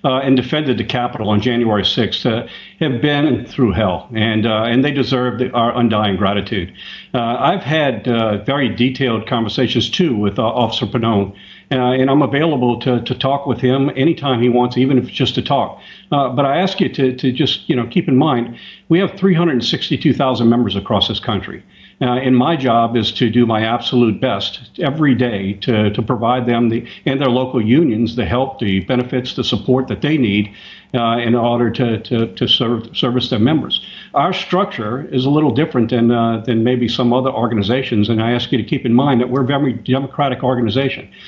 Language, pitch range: English, 115-135 Hz